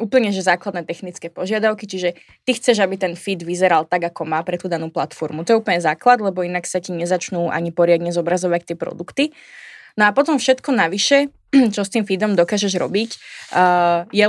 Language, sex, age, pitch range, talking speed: Slovak, female, 20-39, 175-215 Hz, 190 wpm